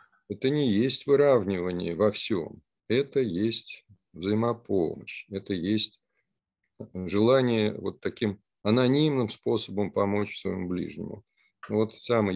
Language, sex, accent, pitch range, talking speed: Russian, male, native, 100-120 Hz, 100 wpm